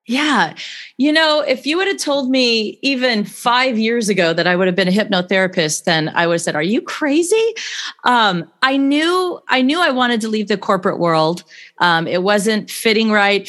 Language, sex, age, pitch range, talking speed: English, female, 30-49, 165-210 Hz, 200 wpm